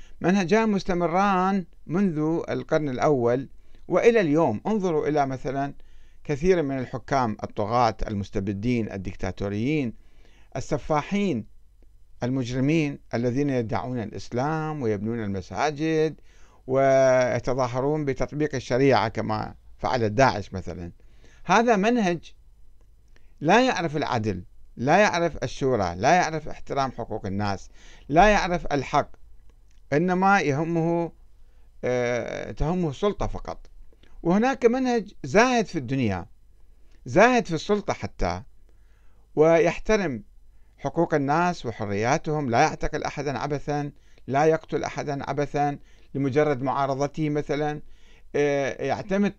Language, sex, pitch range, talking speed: Arabic, male, 110-160 Hz, 90 wpm